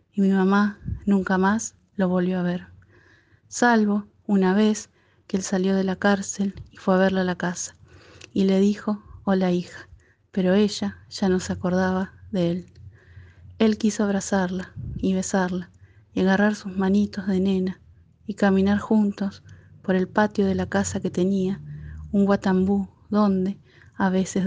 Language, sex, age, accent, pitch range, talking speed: Spanish, female, 30-49, Venezuelan, 185-200 Hz, 160 wpm